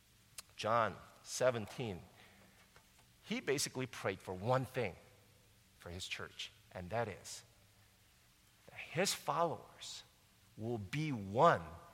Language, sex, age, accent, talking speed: English, male, 50-69, American, 100 wpm